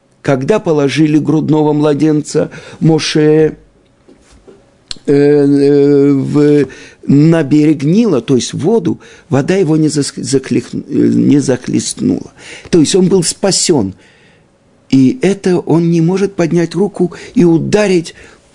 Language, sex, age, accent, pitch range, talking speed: Russian, male, 50-69, native, 150-190 Hz, 110 wpm